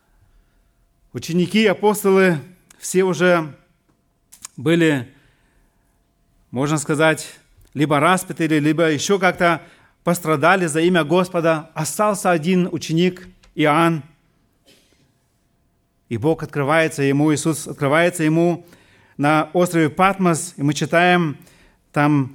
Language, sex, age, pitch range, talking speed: Russian, male, 40-59, 140-185 Hz, 90 wpm